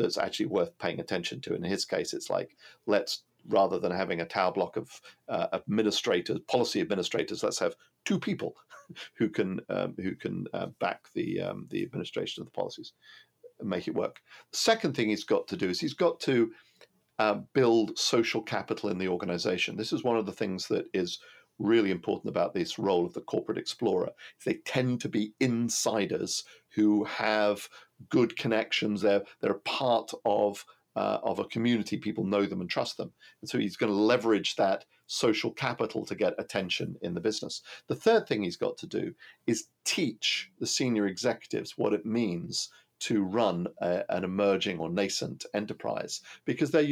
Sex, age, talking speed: male, 50-69, 185 wpm